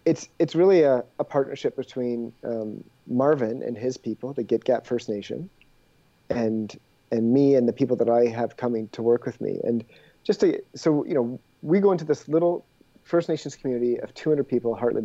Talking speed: 195 wpm